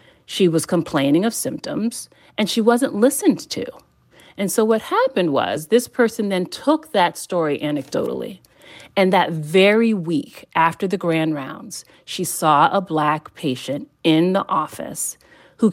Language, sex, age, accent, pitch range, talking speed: English, female, 40-59, American, 150-195 Hz, 150 wpm